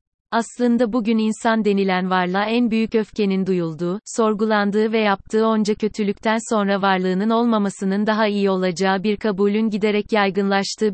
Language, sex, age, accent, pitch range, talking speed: Turkish, female, 30-49, native, 195-225 Hz, 130 wpm